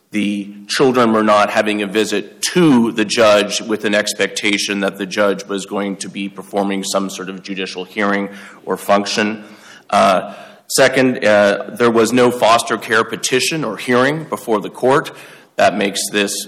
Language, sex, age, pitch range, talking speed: English, male, 30-49, 100-115 Hz, 165 wpm